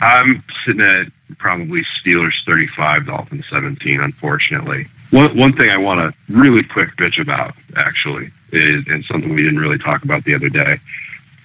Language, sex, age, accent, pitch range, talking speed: English, male, 40-59, American, 90-140 Hz, 170 wpm